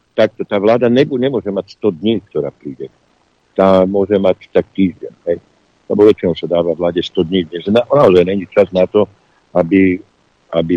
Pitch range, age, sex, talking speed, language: 90-105 Hz, 60-79, male, 180 wpm, Slovak